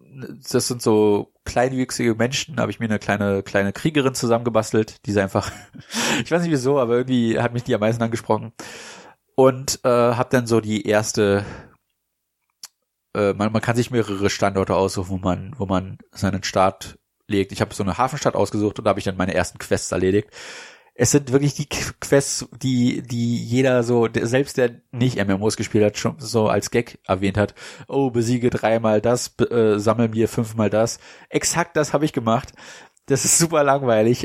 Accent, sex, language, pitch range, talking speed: German, male, German, 105-125 Hz, 185 wpm